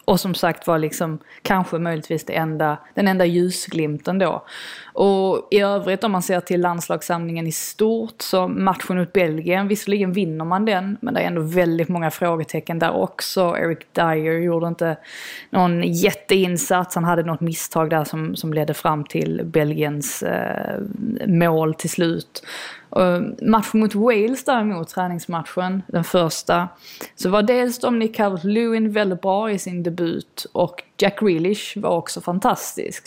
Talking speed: 160 wpm